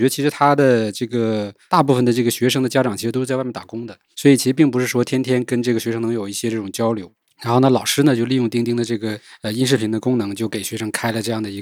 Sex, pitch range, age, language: male, 110-135 Hz, 20-39, Chinese